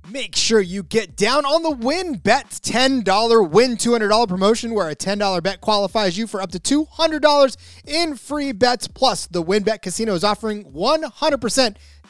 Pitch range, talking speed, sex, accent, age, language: 180-240 Hz, 160 wpm, male, American, 30-49, English